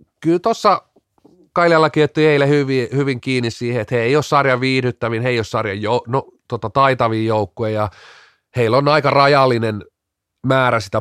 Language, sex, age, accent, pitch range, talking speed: Finnish, male, 30-49, native, 110-140 Hz, 165 wpm